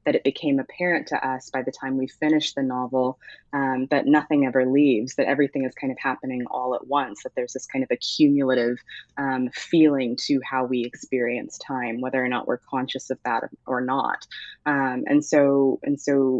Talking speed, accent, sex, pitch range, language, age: 190 wpm, American, female, 130-145 Hz, English, 20-39